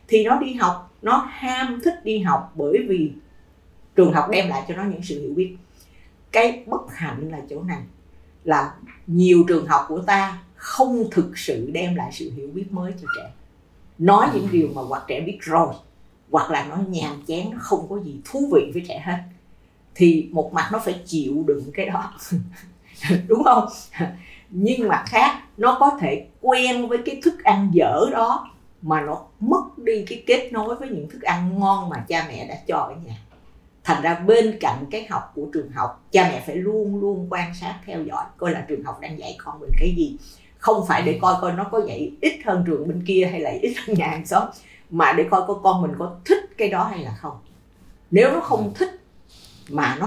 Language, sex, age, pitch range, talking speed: Vietnamese, female, 50-69, 160-220 Hz, 210 wpm